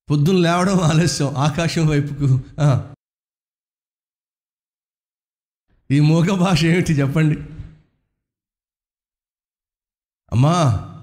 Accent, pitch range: native, 105-170 Hz